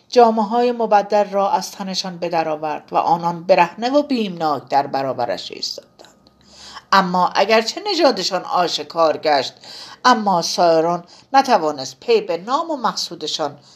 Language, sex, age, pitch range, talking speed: Persian, female, 50-69, 185-235 Hz, 125 wpm